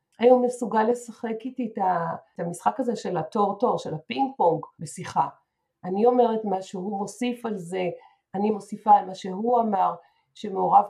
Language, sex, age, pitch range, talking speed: Hebrew, female, 50-69, 180-230 Hz, 150 wpm